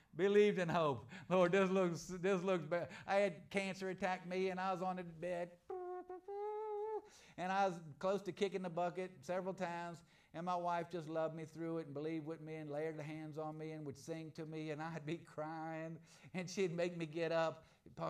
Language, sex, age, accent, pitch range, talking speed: English, male, 50-69, American, 165-200 Hz, 210 wpm